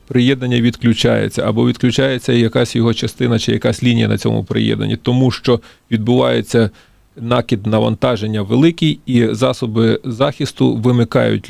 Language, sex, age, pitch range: Ukrainian, male, 30-49, 115-135 Hz